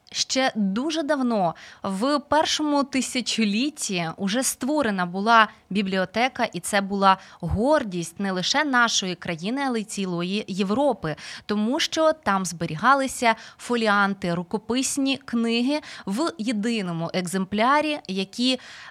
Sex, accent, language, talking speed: female, native, Ukrainian, 105 wpm